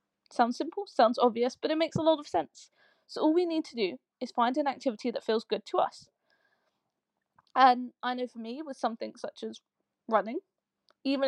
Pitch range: 245-300 Hz